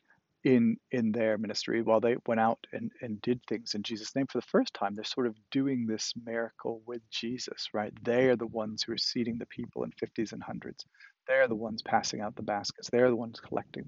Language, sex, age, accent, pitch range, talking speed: English, male, 40-59, American, 110-125 Hz, 225 wpm